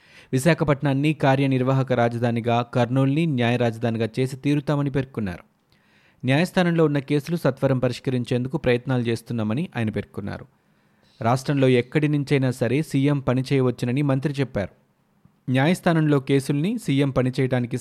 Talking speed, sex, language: 100 wpm, male, Telugu